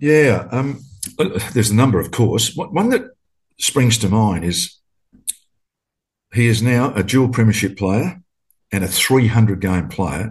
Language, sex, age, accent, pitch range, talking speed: English, male, 50-69, Australian, 95-120 Hz, 140 wpm